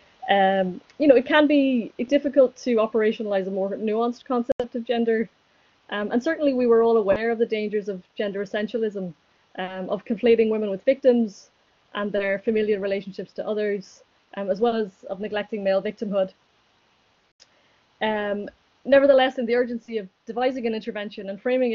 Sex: female